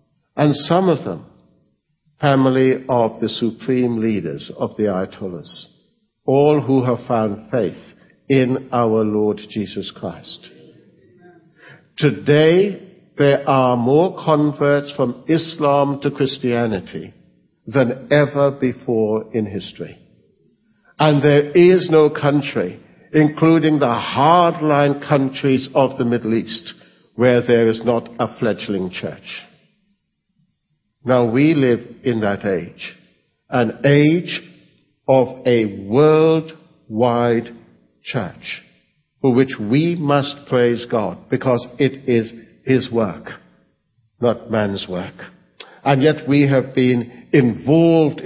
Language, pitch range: English, 120-150 Hz